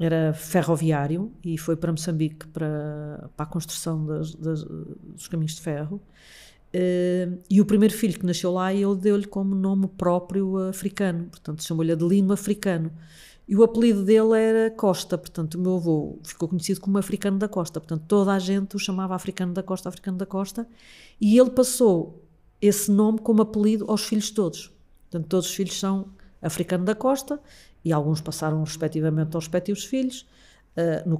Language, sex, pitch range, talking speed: Portuguese, female, 160-195 Hz, 170 wpm